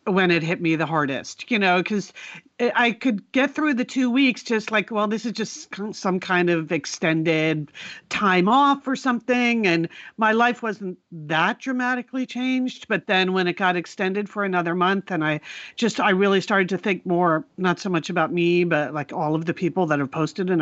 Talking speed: 205 wpm